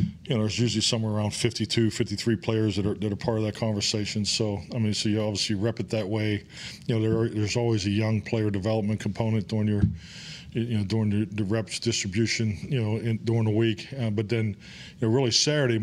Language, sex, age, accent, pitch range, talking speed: English, male, 40-59, American, 100-115 Hz, 225 wpm